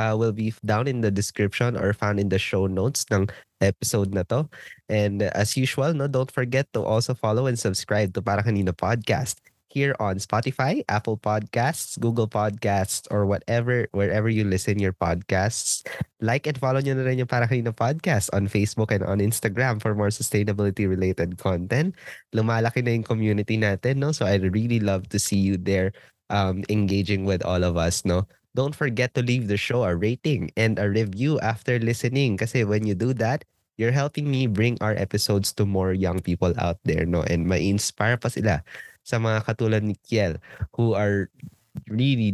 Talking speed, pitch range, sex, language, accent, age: 175 wpm, 95-120 Hz, male, English, Filipino, 20-39